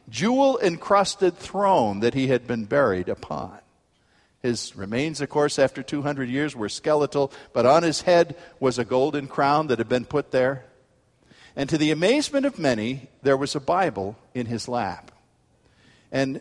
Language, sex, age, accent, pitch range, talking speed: English, male, 50-69, American, 115-165 Hz, 160 wpm